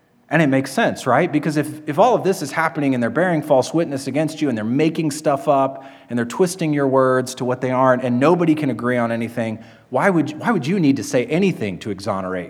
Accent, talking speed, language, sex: American, 240 wpm, English, male